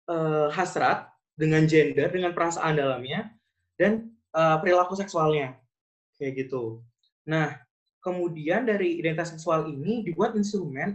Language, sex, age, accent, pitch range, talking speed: Indonesian, male, 20-39, native, 140-185 Hz, 115 wpm